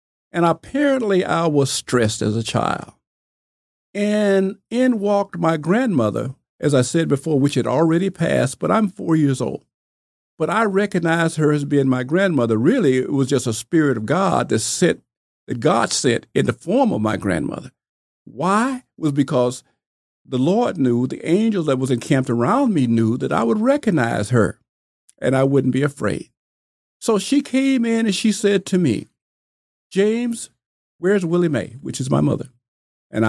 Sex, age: male, 50-69